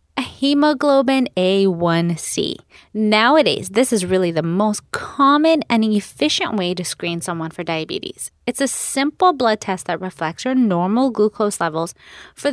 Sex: female